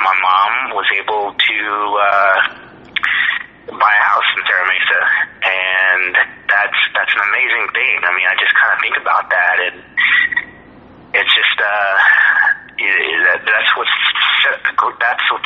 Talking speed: 135 wpm